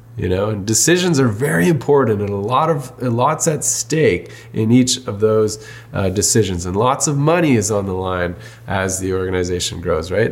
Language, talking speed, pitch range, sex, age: English, 200 wpm, 105-130 Hz, male, 20-39